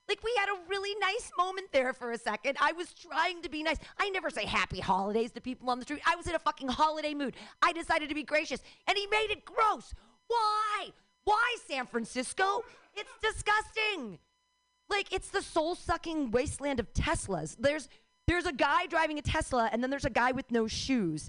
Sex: female